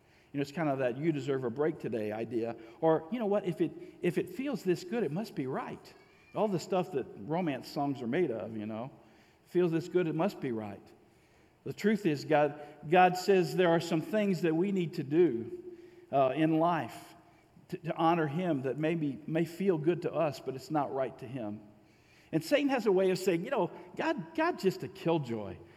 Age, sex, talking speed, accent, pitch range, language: 50-69, male, 220 wpm, American, 125-190 Hz, English